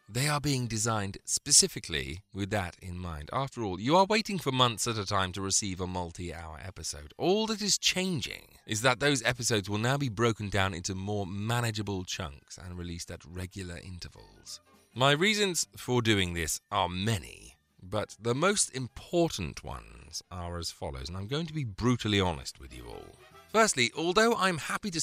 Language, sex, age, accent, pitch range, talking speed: English, male, 30-49, British, 85-130 Hz, 180 wpm